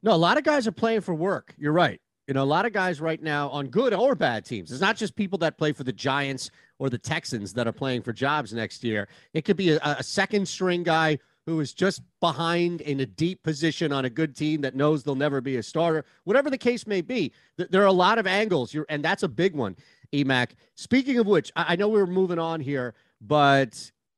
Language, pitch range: English, 130-170 Hz